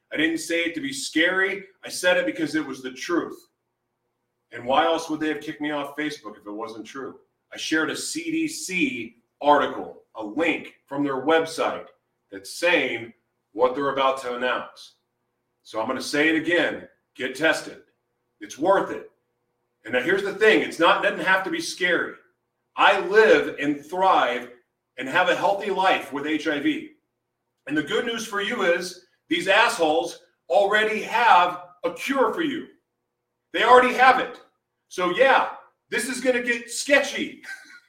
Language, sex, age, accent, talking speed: English, male, 40-59, American, 170 wpm